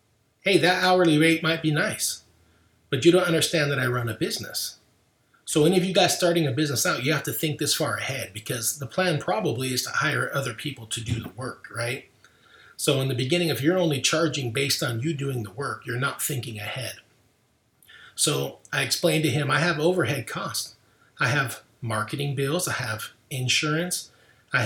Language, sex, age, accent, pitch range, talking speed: English, male, 30-49, American, 120-160 Hz, 195 wpm